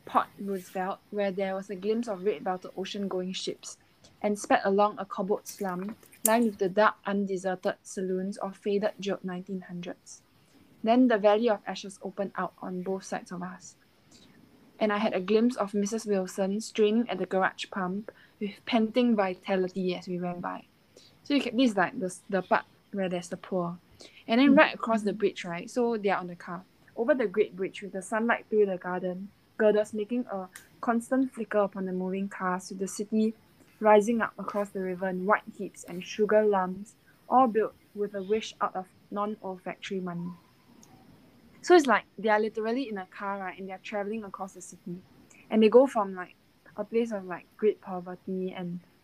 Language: English